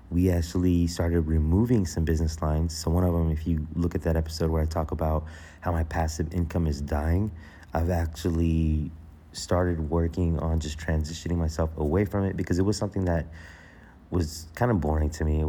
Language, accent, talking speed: English, American, 195 wpm